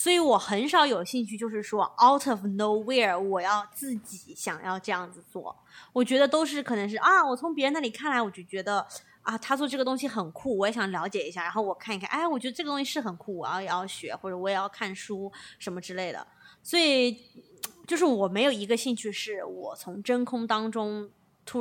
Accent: native